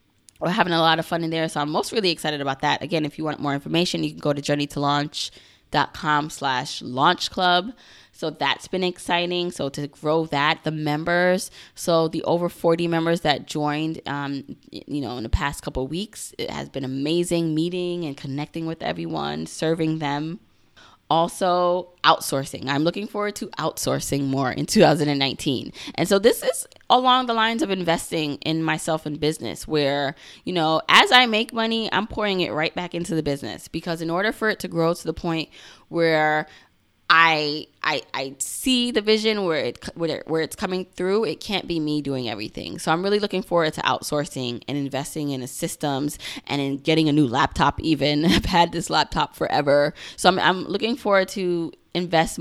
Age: 20-39